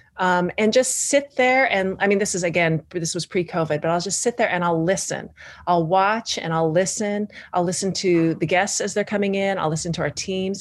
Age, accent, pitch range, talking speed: 30-49, American, 160-205 Hz, 240 wpm